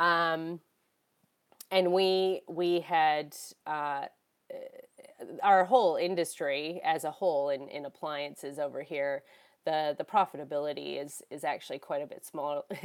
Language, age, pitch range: English, 20-39, 150-190 Hz